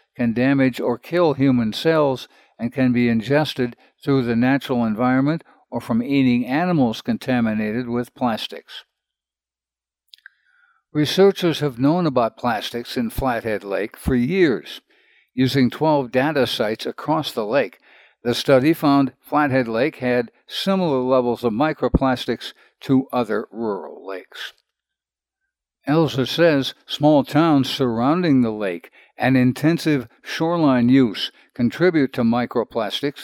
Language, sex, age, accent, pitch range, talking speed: English, male, 60-79, American, 120-145 Hz, 120 wpm